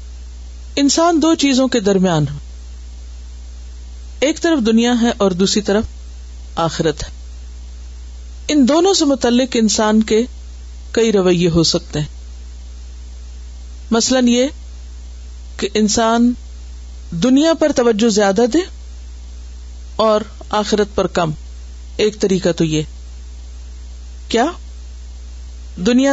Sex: female